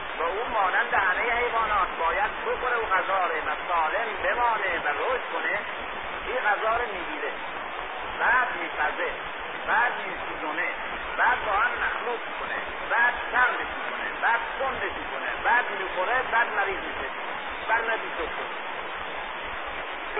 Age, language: 50-69, Persian